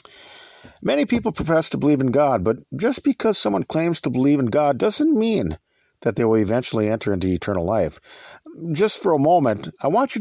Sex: male